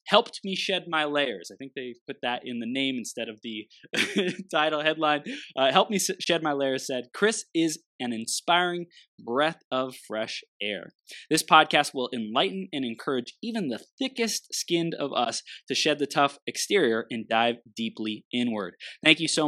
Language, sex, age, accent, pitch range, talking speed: English, male, 20-39, American, 120-155 Hz, 180 wpm